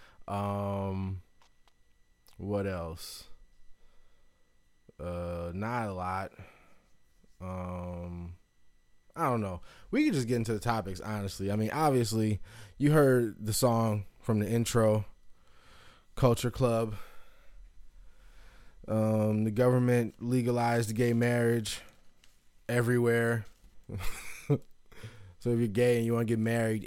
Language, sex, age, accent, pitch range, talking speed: English, male, 20-39, American, 100-130 Hz, 105 wpm